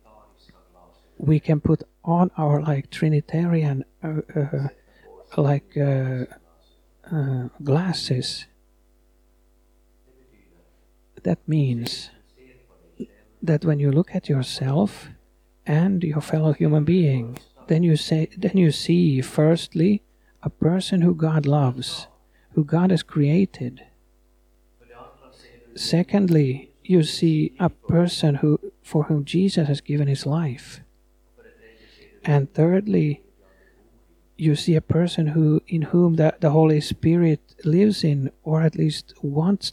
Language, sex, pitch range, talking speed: Swedish, male, 120-160 Hz, 110 wpm